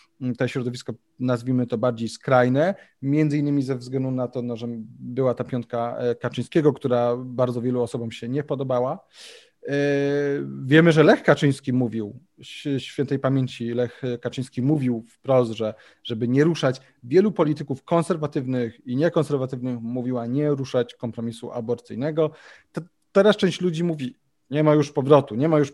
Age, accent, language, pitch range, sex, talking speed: 30-49, native, Polish, 125-150 Hz, male, 150 wpm